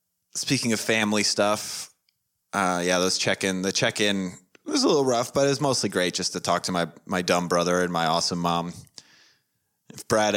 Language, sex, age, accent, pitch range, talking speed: English, male, 30-49, American, 90-115 Hz, 190 wpm